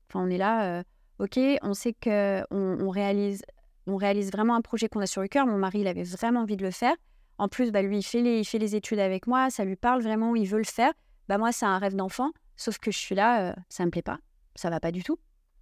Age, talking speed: 30-49, 290 wpm